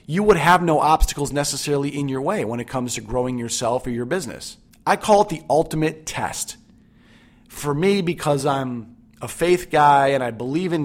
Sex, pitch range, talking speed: male, 135-170 Hz, 195 wpm